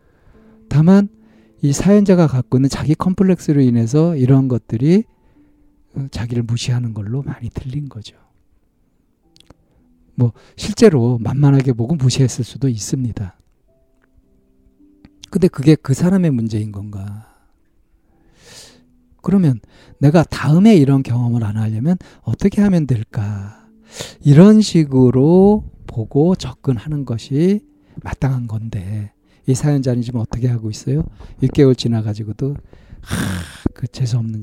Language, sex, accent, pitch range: Korean, male, native, 105-145 Hz